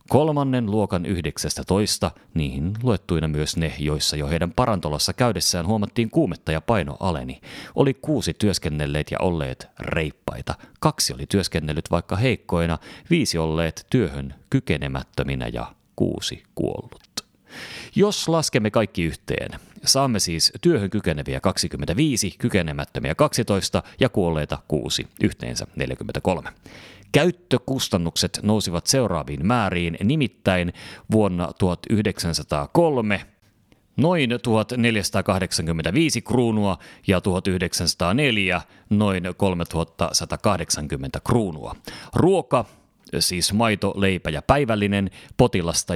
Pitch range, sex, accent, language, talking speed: 85-110 Hz, male, native, Finnish, 95 wpm